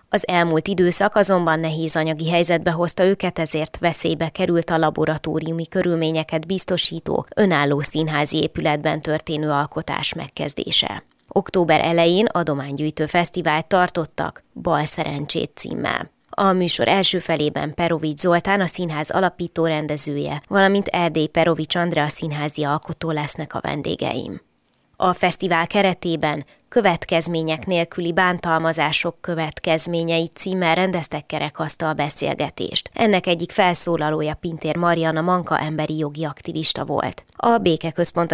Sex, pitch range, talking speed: female, 155-175 Hz, 115 wpm